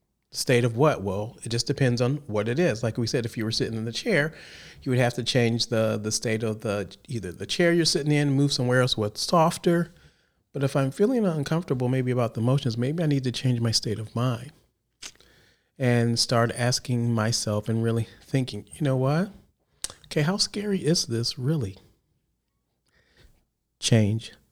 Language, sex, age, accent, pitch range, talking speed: English, male, 40-59, American, 115-155 Hz, 190 wpm